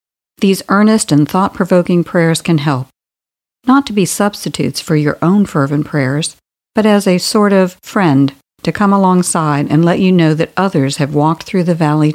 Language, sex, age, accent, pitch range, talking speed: English, female, 50-69, American, 150-195 Hz, 180 wpm